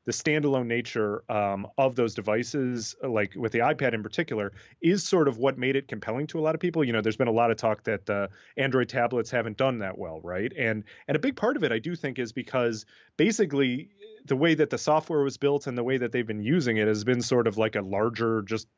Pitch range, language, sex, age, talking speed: 110-140 Hz, English, male, 30-49, 250 wpm